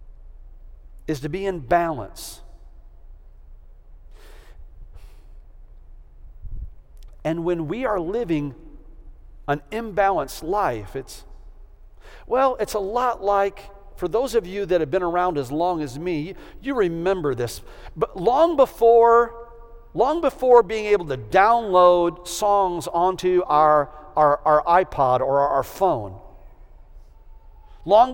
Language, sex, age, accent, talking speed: English, male, 50-69, American, 115 wpm